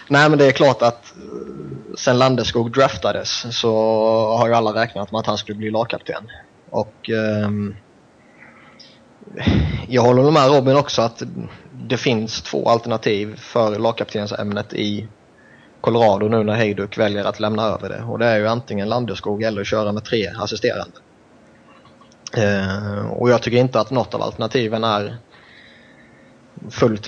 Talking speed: 150 wpm